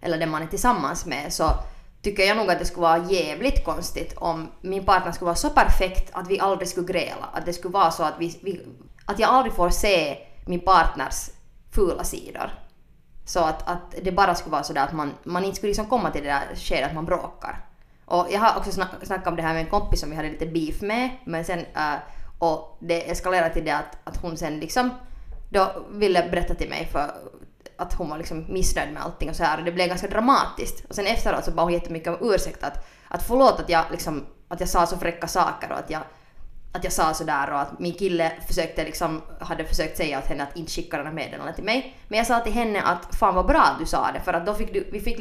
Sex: female